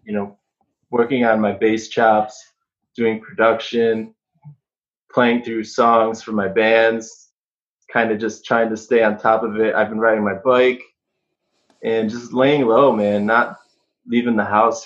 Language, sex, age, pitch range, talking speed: English, male, 20-39, 105-125 Hz, 160 wpm